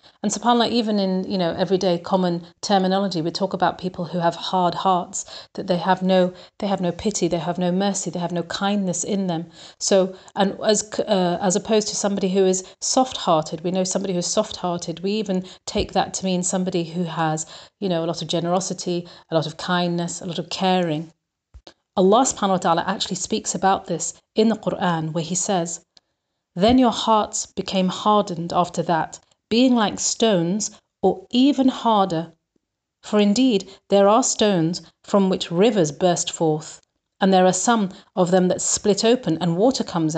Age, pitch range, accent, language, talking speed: 40-59, 175-200 Hz, British, English, 190 wpm